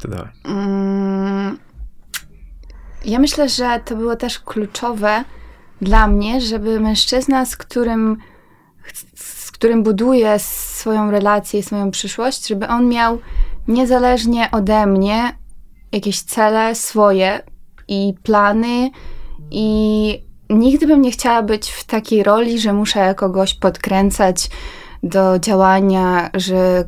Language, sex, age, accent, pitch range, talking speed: Polish, female, 20-39, native, 195-230 Hz, 110 wpm